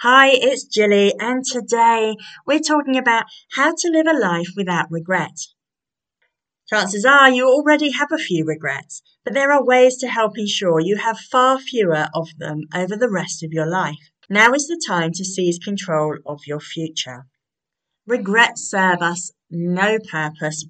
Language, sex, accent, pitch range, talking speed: English, female, British, 170-250 Hz, 165 wpm